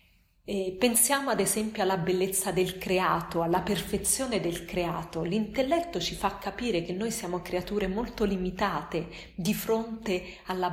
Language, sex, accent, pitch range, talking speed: Italian, female, native, 175-210 Hz, 135 wpm